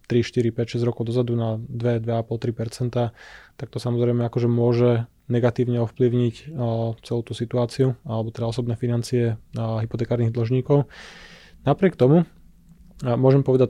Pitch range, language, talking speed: 120-130 Hz, Slovak, 140 wpm